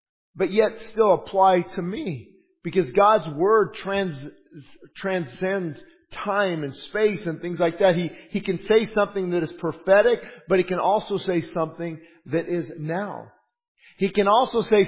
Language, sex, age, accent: English, male, 50-69, American